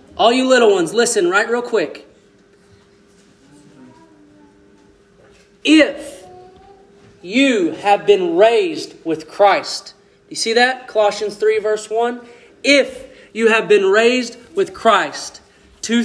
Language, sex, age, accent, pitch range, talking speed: English, male, 30-49, American, 200-285 Hz, 110 wpm